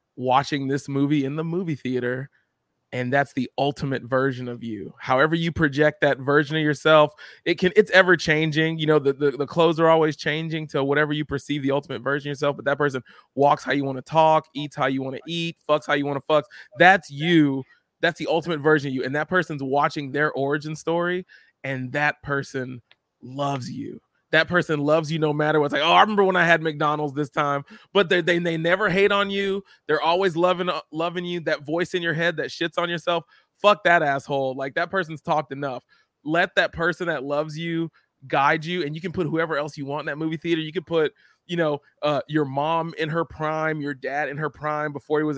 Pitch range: 140-170 Hz